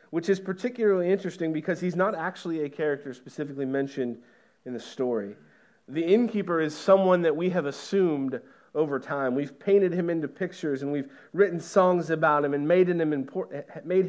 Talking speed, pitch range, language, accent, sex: 160 wpm, 145-180 Hz, English, American, male